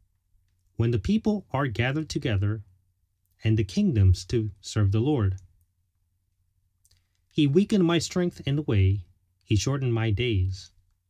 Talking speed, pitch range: 130 wpm, 90-120 Hz